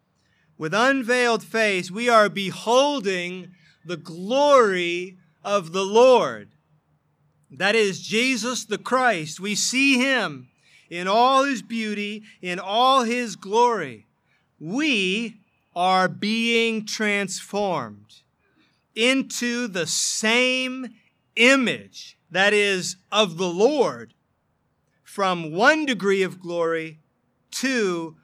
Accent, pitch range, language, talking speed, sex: American, 145-215 Hz, English, 100 wpm, male